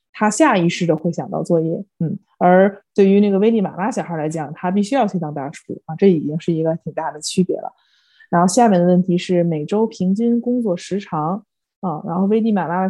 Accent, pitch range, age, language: native, 170-220 Hz, 20-39, Chinese